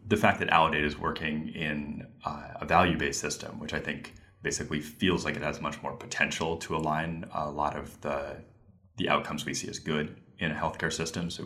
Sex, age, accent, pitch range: male, 20-39, American, 75-95 Hz